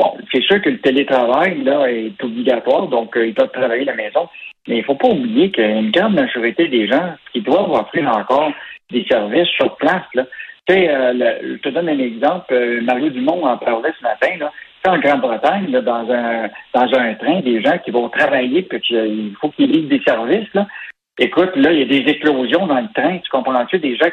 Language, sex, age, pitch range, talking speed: French, male, 60-79, 115-160 Hz, 230 wpm